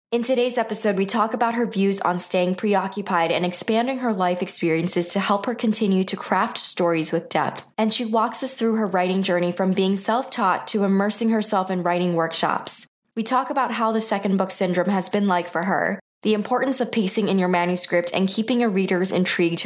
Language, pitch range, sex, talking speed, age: English, 180-220 Hz, female, 205 wpm, 20-39